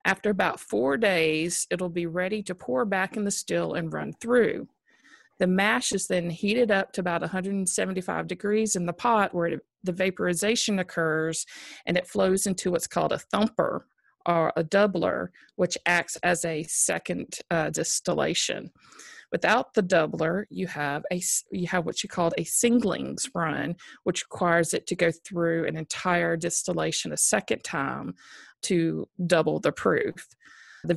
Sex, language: female, English